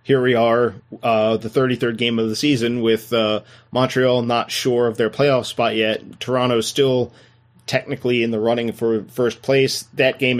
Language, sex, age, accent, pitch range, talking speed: English, male, 30-49, American, 115-130 Hz, 180 wpm